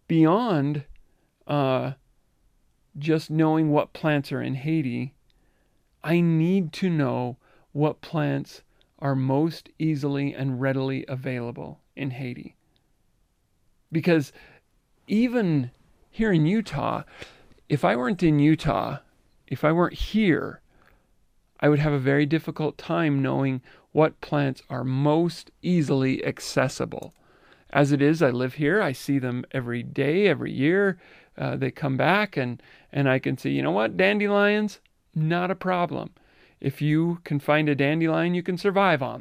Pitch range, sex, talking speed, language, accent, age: 135-165 Hz, male, 140 wpm, English, American, 40-59